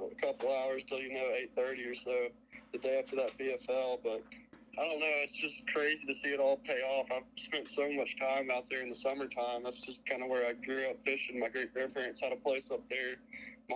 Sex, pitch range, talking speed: male, 130-160 Hz, 245 wpm